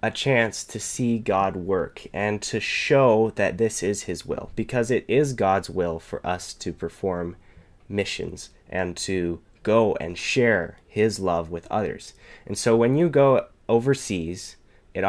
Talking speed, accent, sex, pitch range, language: 160 wpm, American, male, 90-115 Hz, English